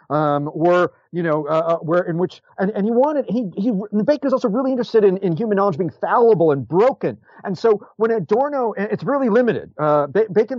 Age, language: 40-59, English